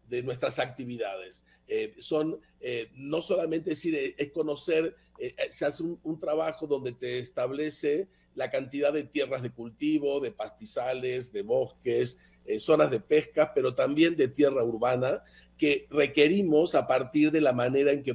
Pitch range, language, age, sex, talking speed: 135-185 Hz, Spanish, 50-69, male, 160 wpm